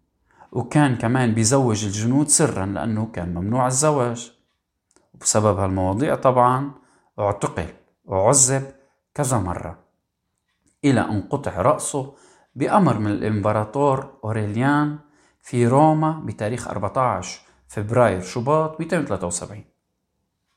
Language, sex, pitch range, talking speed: Arabic, male, 100-130 Hz, 90 wpm